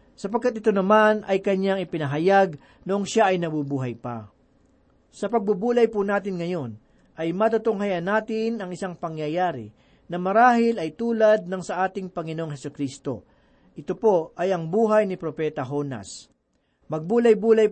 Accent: native